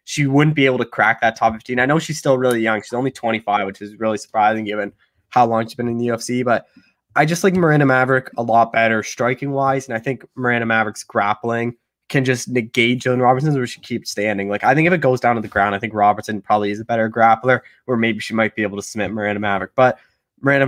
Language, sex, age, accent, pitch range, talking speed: English, male, 20-39, American, 105-125 Hz, 250 wpm